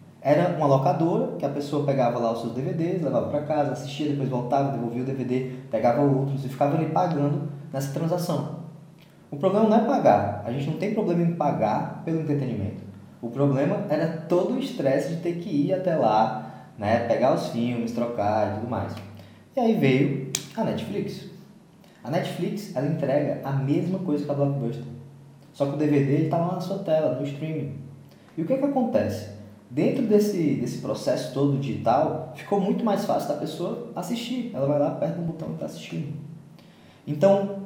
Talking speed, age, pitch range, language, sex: 185 wpm, 20-39, 135-175 Hz, Portuguese, male